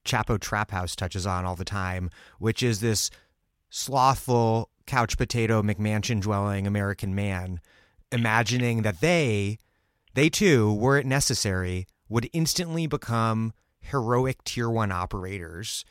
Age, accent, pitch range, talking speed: 30-49, American, 95-125 Hz, 125 wpm